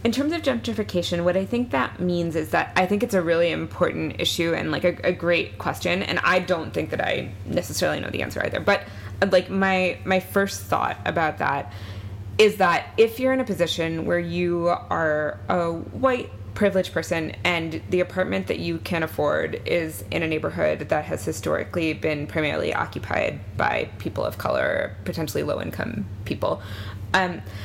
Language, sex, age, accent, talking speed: English, female, 20-39, American, 180 wpm